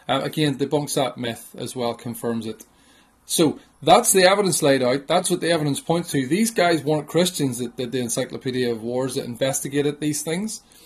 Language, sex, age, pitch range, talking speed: English, male, 30-49, 135-170 Hz, 195 wpm